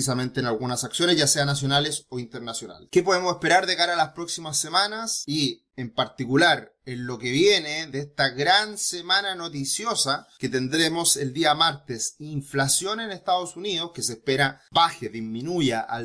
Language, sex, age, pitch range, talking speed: Spanish, male, 30-49, 130-170 Hz, 170 wpm